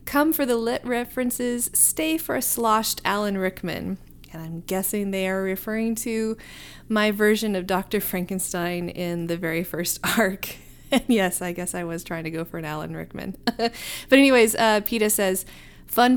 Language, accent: English, American